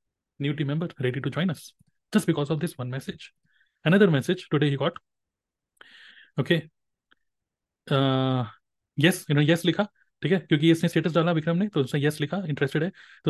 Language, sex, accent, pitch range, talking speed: Hindi, male, native, 140-175 Hz, 180 wpm